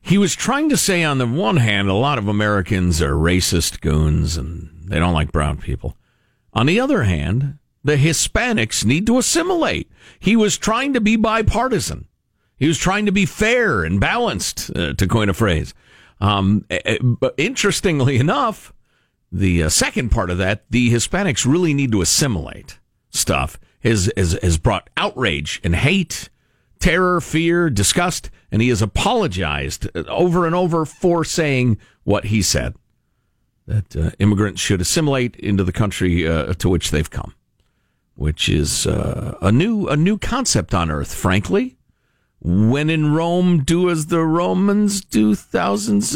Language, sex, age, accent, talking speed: English, male, 50-69, American, 160 wpm